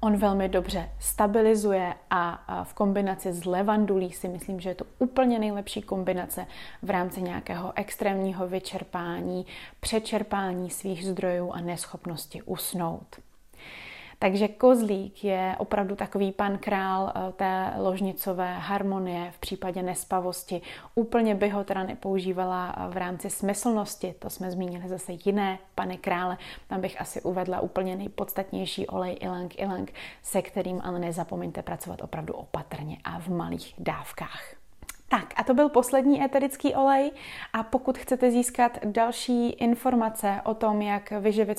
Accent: native